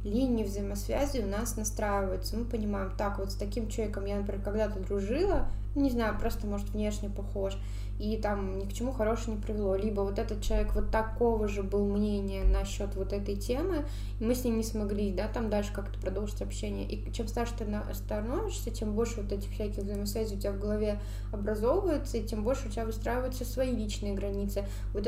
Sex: female